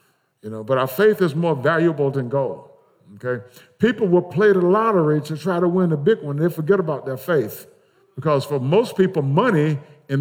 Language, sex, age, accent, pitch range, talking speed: English, male, 50-69, American, 150-210 Hz, 200 wpm